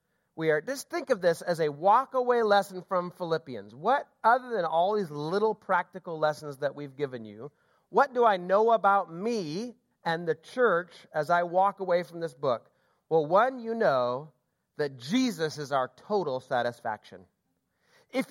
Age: 40-59